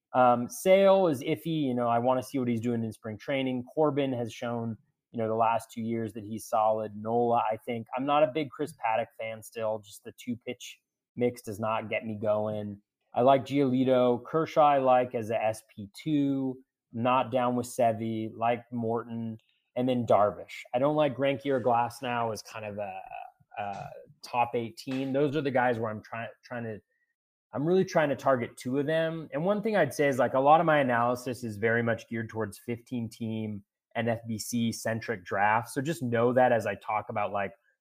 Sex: male